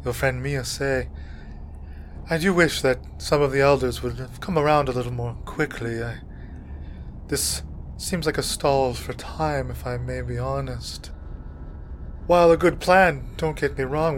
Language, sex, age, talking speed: English, male, 20-39, 170 wpm